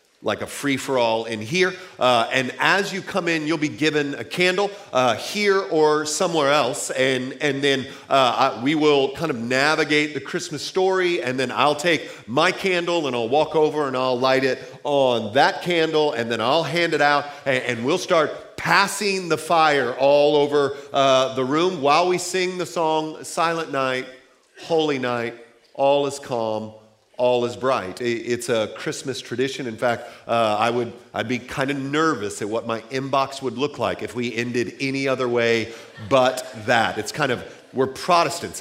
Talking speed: 185 wpm